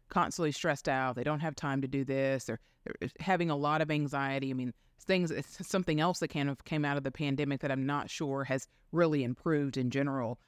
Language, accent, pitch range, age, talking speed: English, American, 125-150 Hz, 30-49, 230 wpm